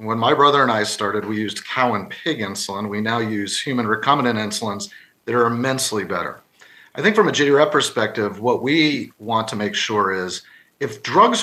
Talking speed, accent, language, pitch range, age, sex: 195 wpm, American, English, 105-140 Hz, 40-59, male